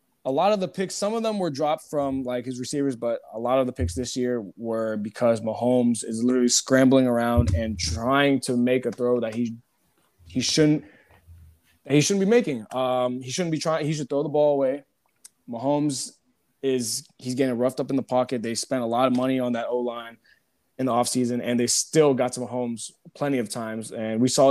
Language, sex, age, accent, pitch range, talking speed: English, male, 20-39, American, 115-135 Hz, 215 wpm